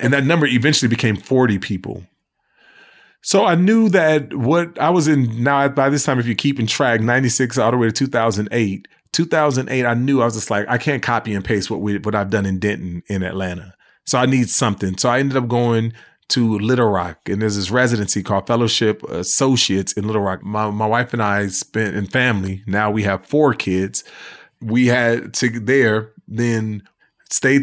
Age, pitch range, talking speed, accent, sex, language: 30-49, 100-125 Hz, 200 wpm, American, male, English